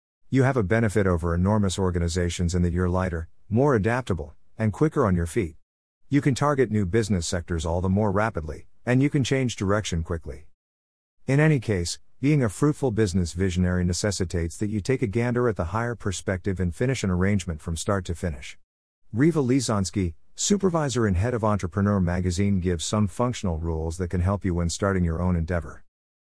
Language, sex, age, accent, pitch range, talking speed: English, male, 50-69, American, 85-115 Hz, 185 wpm